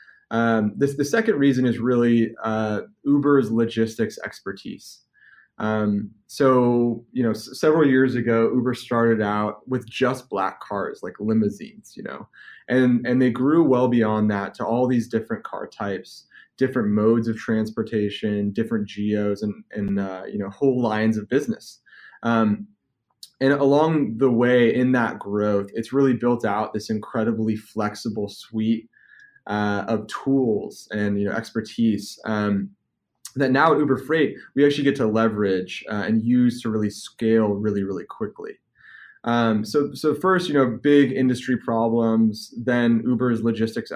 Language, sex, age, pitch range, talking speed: English, male, 20-39, 105-130 Hz, 155 wpm